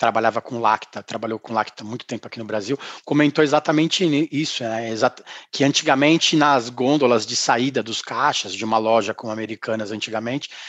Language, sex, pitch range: Portuguese, male, 145-175 Hz